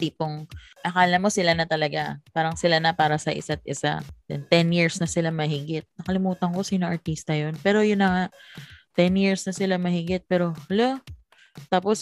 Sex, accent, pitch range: female, native, 160-200 Hz